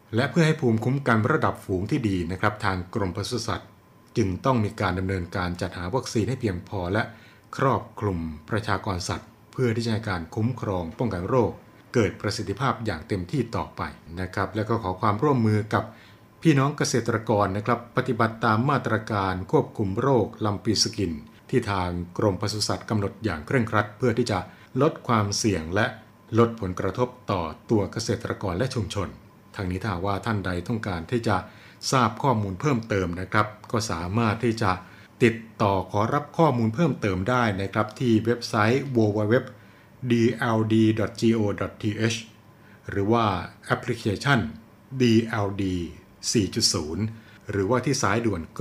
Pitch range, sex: 100-120 Hz, male